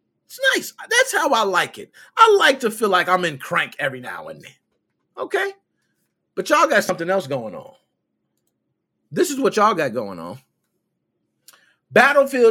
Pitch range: 165-245 Hz